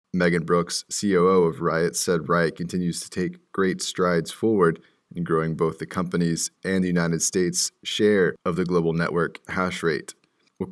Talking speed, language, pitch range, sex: 170 wpm, English, 85-95 Hz, male